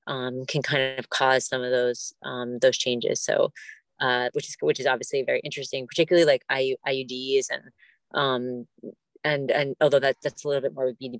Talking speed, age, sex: 195 wpm, 30-49, female